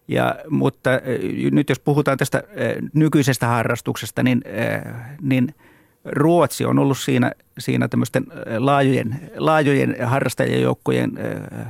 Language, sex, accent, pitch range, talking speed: Finnish, male, native, 120-140 Hz, 85 wpm